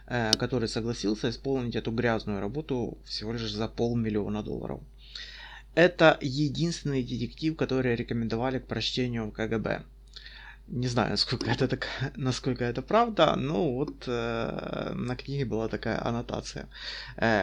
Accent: native